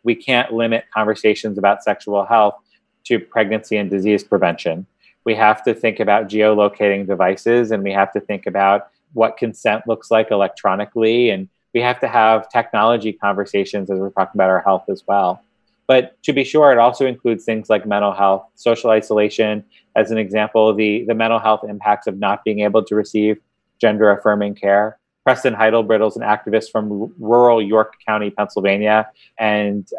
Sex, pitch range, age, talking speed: male, 100-110 Hz, 30-49, 170 wpm